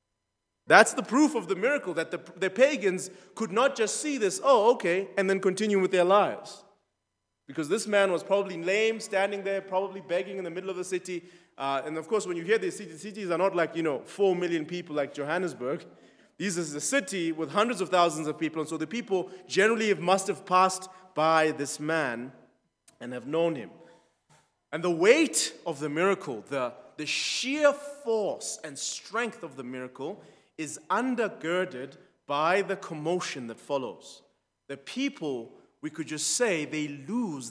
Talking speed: 185 wpm